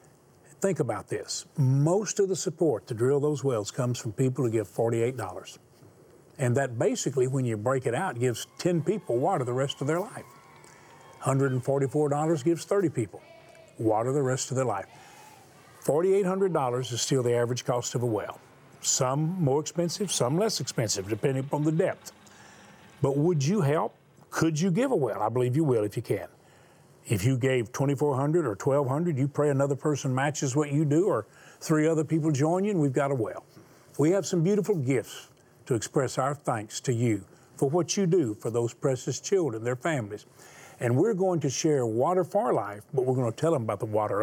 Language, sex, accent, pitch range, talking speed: English, male, American, 120-160 Hz, 195 wpm